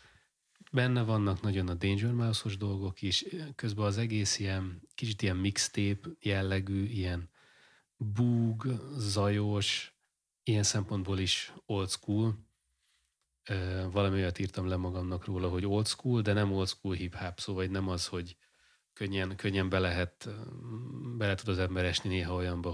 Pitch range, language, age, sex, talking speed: 90-105 Hz, Hungarian, 30-49, male, 135 wpm